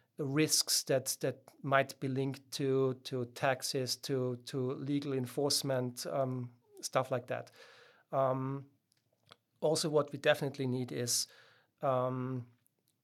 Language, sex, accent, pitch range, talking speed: English, male, German, 130-145 Hz, 115 wpm